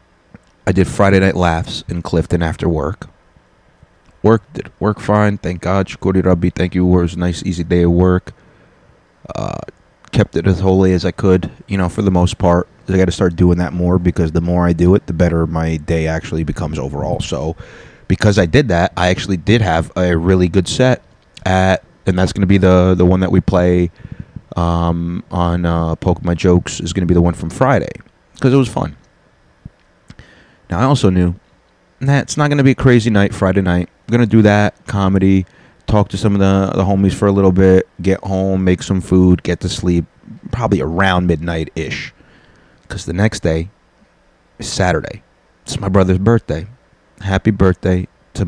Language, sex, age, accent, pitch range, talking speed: English, male, 30-49, American, 85-100 Hz, 195 wpm